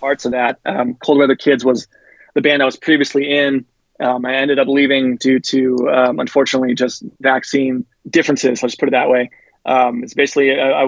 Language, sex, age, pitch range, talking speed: English, male, 20-39, 125-140 Hz, 205 wpm